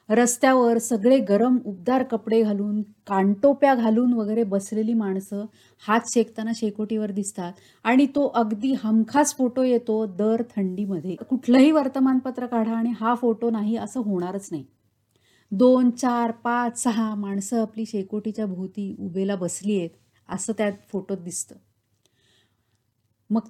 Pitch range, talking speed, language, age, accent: 195-240 Hz, 125 wpm, Marathi, 30-49, native